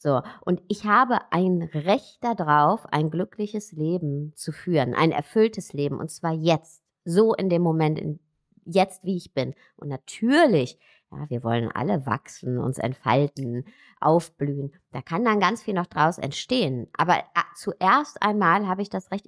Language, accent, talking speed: German, German, 165 wpm